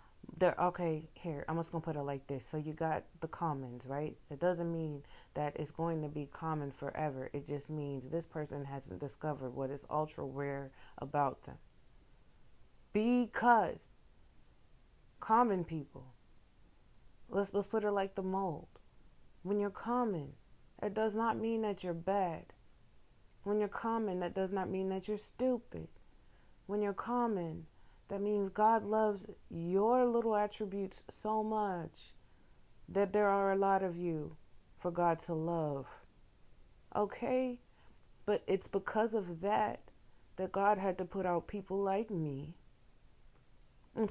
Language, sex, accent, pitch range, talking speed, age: English, female, American, 155-210 Hz, 145 wpm, 30-49